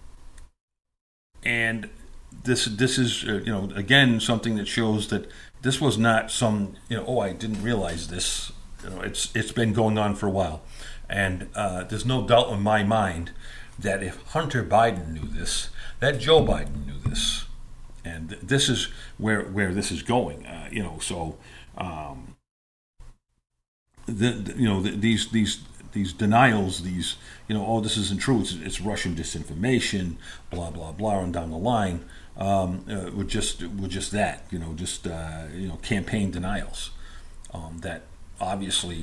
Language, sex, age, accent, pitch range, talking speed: English, male, 50-69, American, 85-110 Hz, 170 wpm